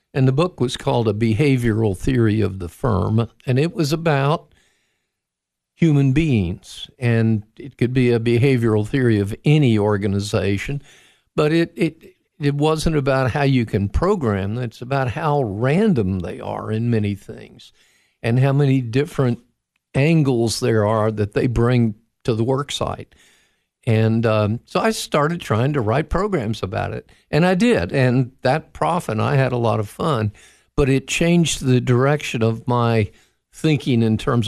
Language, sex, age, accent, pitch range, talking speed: English, male, 50-69, American, 110-140 Hz, 160 wpm